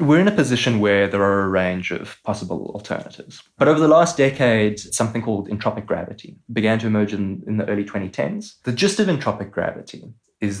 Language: English